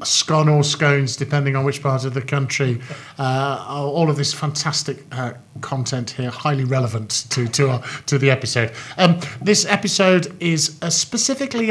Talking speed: 160 wpm